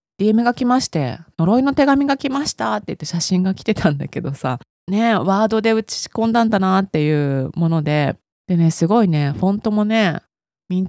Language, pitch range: Japanese, 155-230 Hz